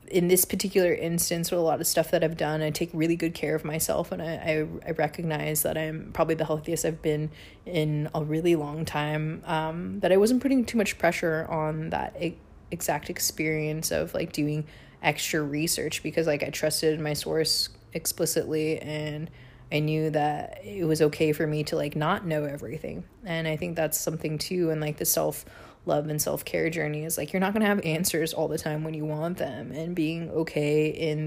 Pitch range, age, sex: 150-165 Hz, 20-39, female